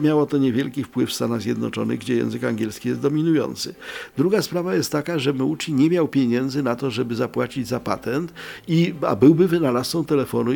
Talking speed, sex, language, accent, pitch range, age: 175 wpm, male, Polish, native, 120-155 Hz, 50-69